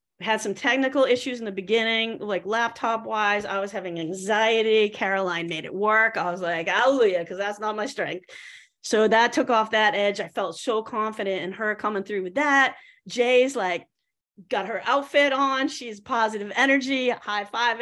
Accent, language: American, English